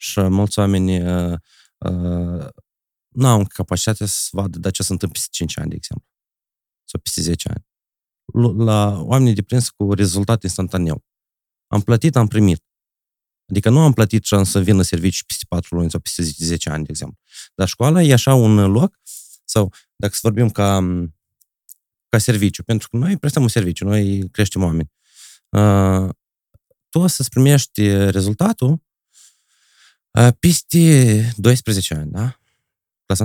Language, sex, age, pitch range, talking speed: Romanian, male, 30-49, 95-115 Hz, 150 wpm